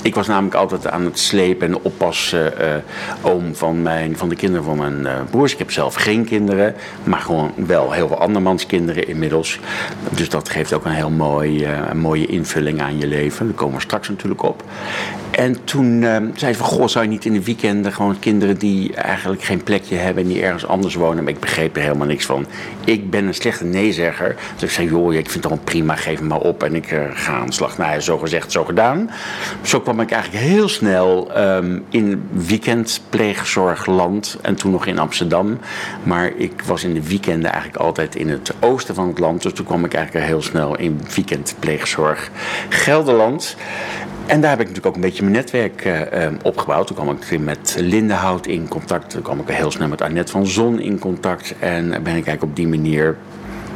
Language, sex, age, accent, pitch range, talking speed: Dutch, male, 60-79, Dutch, 80-105 Hz, 215 wpm